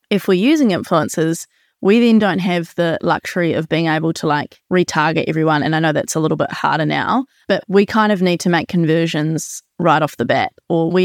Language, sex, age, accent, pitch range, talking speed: English, female, 20-39, Australian, 165-190 Hz, 215 wpm